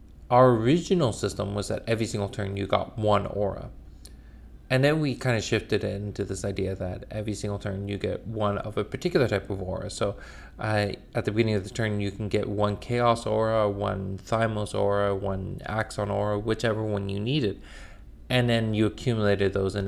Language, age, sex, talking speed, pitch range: English, 20-39, male, 195 wpm, 95-115 Hz